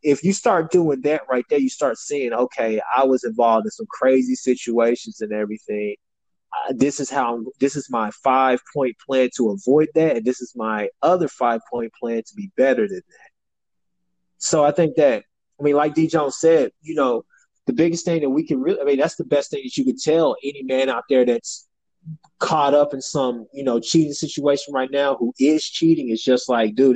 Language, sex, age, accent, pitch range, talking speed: English, male, 20-39, American, 125-165 Hz, 215 wpm